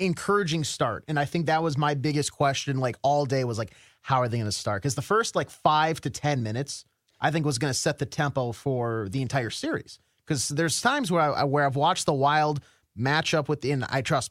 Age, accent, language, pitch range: 30-49, American, English, 120-155 Hz